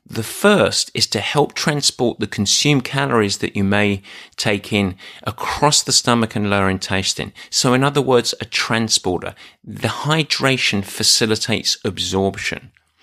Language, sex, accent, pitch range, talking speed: English, male, British, 100-130 Hz, 140 wpm